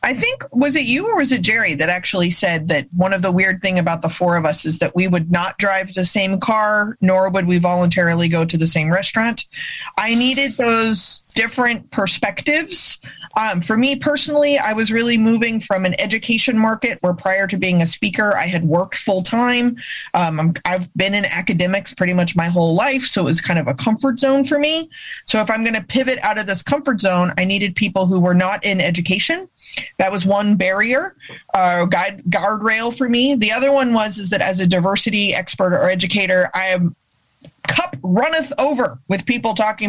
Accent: American